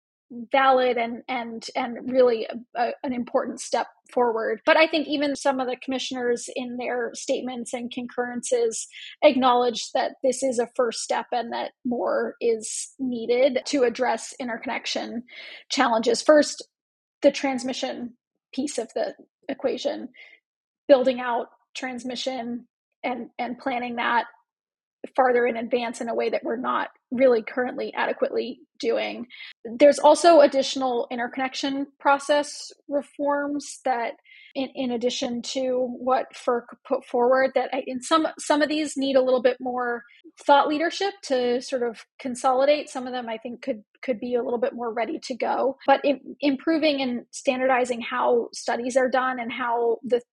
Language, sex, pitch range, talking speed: English, female, 245-280 Hz, 150 wpm